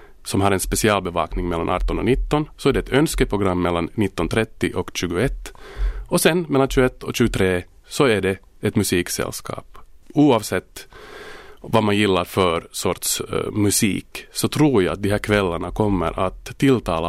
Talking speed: 160 wpm